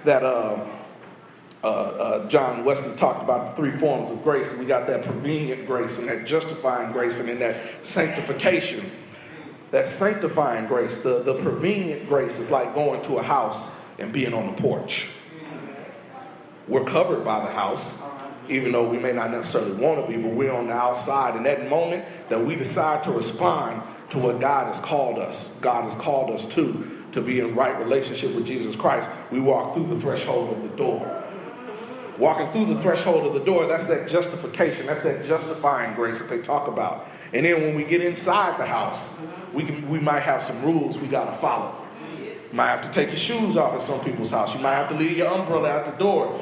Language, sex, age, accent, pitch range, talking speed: English, male, 40-59, American, 140-180 Hz, 205 wpm